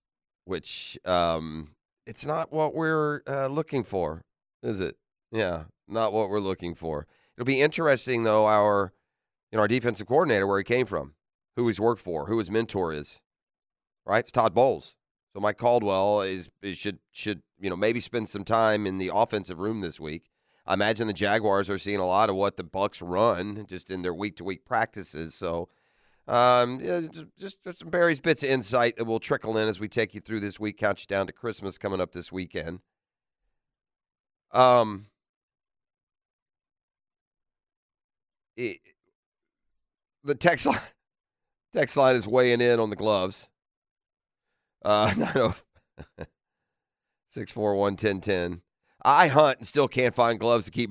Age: 40-59